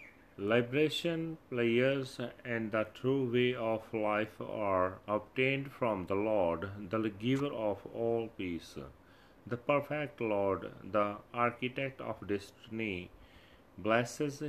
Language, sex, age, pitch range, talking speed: Punjabi, male, 40-59, 100-125 Hz, 110 wpm